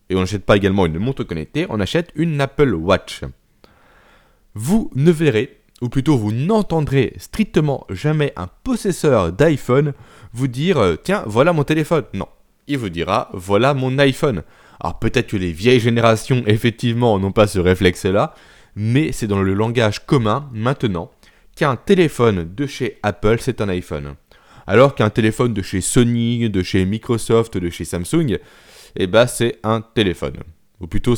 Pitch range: 100-140 Hz